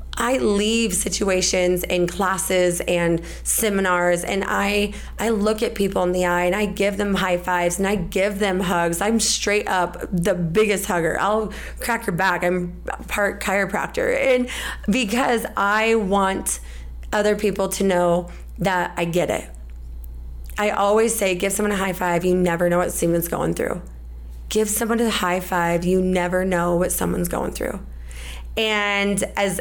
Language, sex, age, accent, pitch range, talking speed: English, female, 20-39, American, 175-210 Hz, 165 wpm